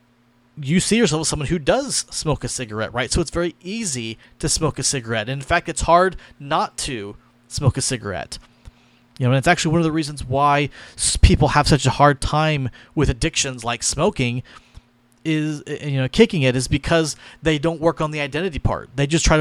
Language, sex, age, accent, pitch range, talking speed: English, male, 30-49, American, 125-165 Hz, 200 wpm